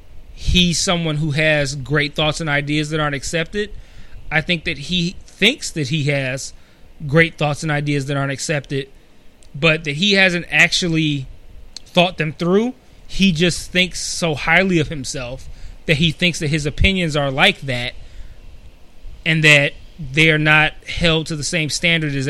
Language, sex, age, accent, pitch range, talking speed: English, male, 20-39, American, 135-170 Hz, 165 wpm